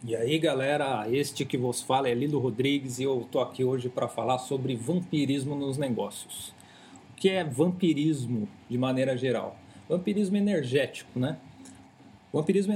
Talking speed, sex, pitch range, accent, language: 150 wpm, male, 130-165 Hz, Brazilian, English